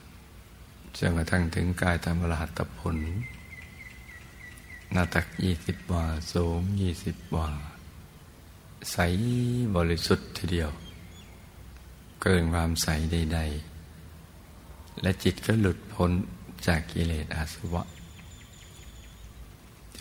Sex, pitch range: male, 80-90 Hz